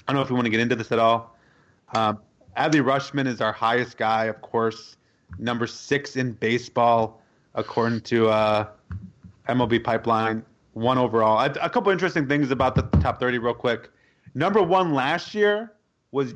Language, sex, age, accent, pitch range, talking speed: English, male, 30-49, American, 115-145 Hz, 170 wpm